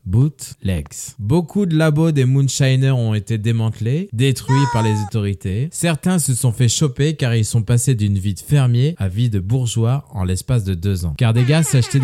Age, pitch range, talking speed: 20-39, 105-140 Hz, 195 wpm